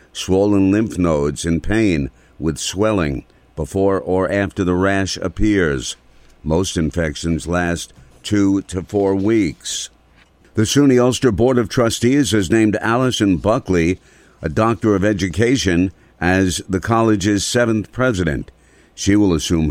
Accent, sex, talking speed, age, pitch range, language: American, male, 130 wpm, 50-69, 85-105 Hz, English